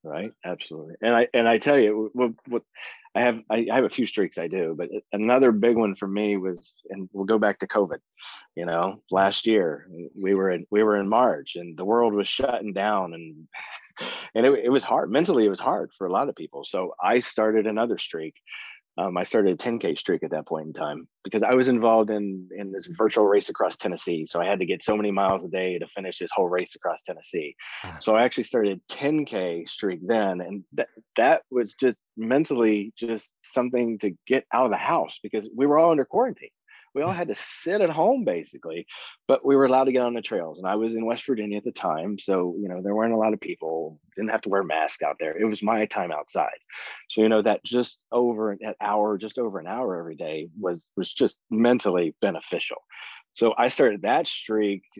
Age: 30-49